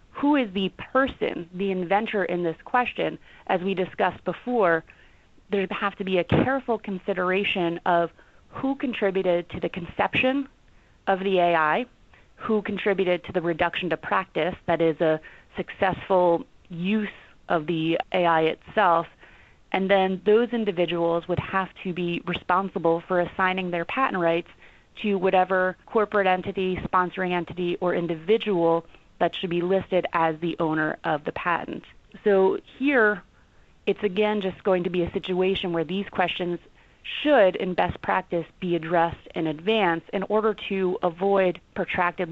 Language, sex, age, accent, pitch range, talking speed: English, female, 30-49, American, 170-205 Hz, 145 wpm